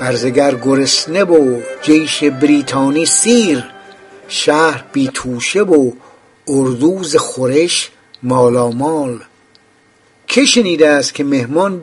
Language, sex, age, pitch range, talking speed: English, male, 60-79, 130-190 Hz, 90 wpm